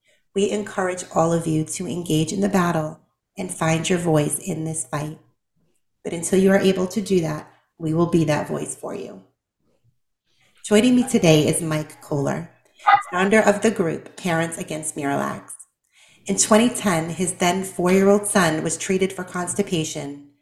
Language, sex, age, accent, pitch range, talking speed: English, female, 30-49, American, 160-195 Hz, 160 wpm